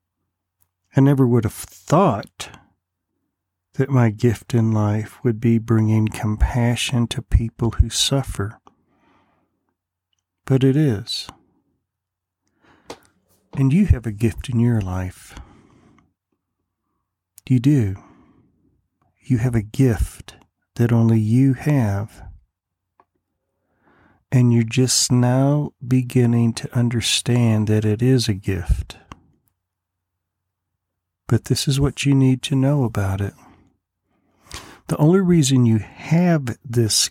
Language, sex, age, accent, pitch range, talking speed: English, male, 50-69, American, 95-130 Hz, 110 wpm